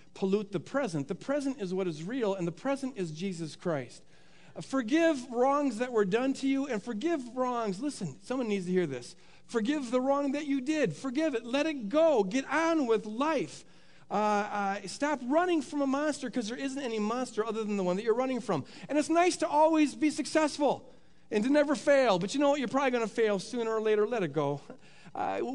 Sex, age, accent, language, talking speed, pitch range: male, 50-69, American, English, 220 wpm, 210-290 Hz